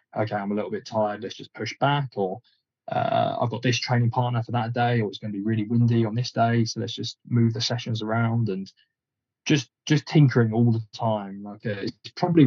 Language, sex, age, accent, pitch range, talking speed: English, male, 20-39, British, 110-120 Hz, 230 wpm